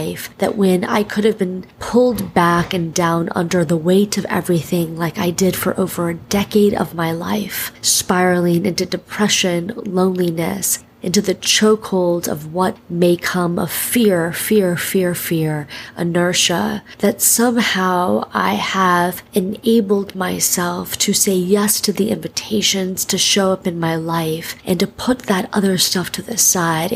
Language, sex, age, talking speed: English, female, 30-49, 155 wpm